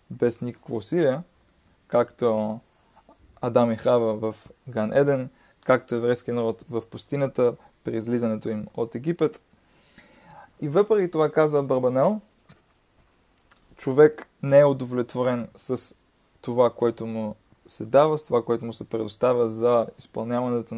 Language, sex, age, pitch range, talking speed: Bulgarian, male, 20-39, 115-135 Hz, 120 wpm